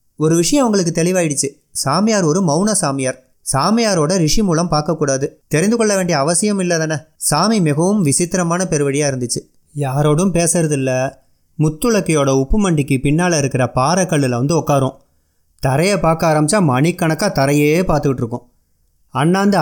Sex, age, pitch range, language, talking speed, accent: male, 30-49, 140-185 Hz, Tamil, 125 wpm, native